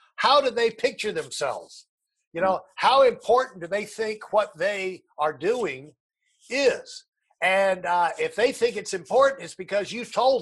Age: 50-69